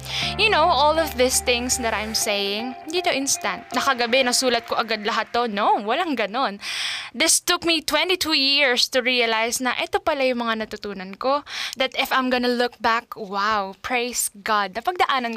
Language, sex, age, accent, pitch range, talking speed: Filipino, female, 10-29, native, 210-260 Hz, 170 wpm